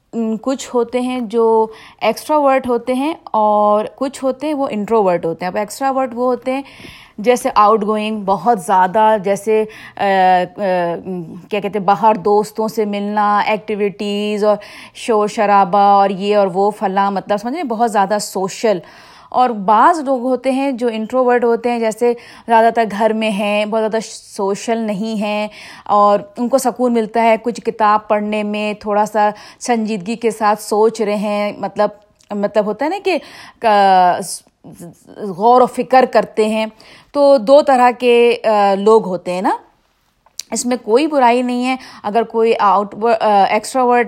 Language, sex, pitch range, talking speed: Urdu, female, 205-245 Hz, 165 wpm